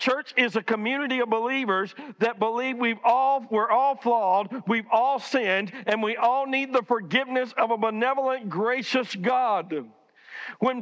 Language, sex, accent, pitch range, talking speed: English, male, American, 175-260 Hz, 155 wpm